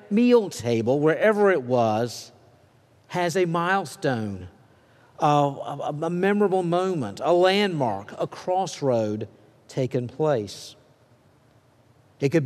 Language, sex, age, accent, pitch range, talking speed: English, male, 50-69, American, 130-190 Hz, 100 wpm